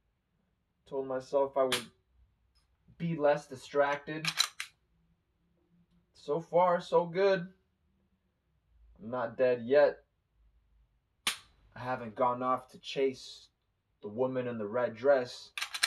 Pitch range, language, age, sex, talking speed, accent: 95-145 Hz, English, 20-39, male, 100 wpm, American